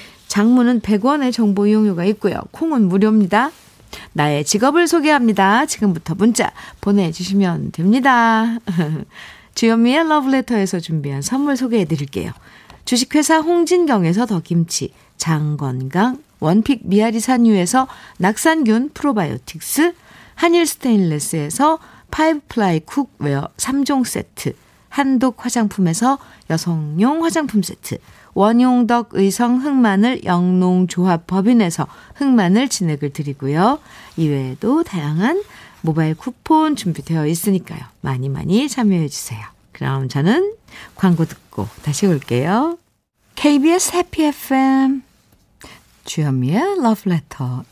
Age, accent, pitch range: 50-69, native, 160-260 Hz